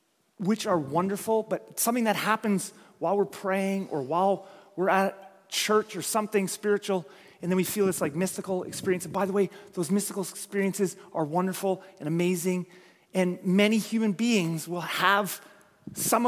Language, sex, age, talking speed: English, male, 30-49, 160 wpm